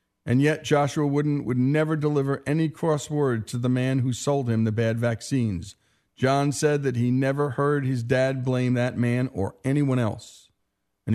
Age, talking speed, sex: 50-69, 180 wpm, male